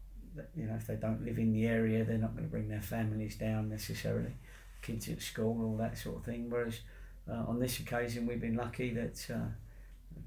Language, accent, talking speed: English, British, 210 wpm